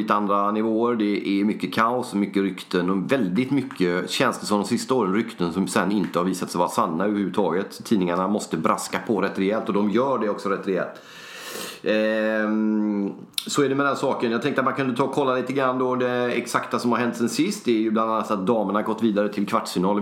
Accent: native